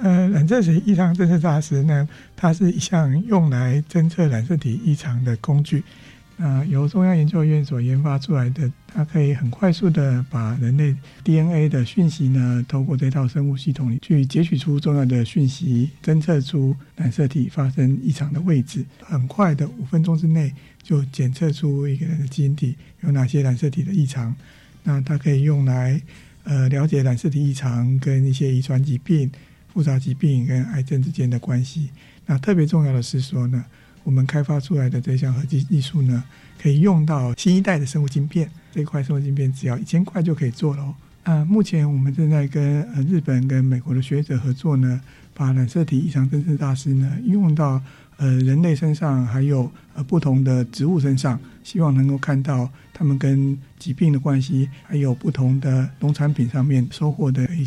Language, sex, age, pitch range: Chinese, male, 60-79, 130-155 Hz